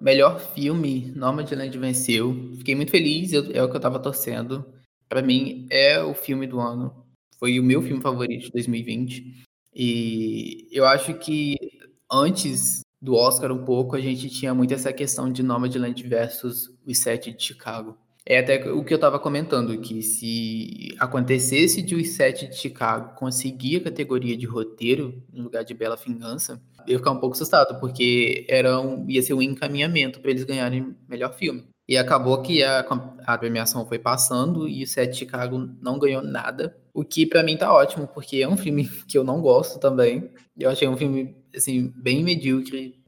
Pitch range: 125-140 Hz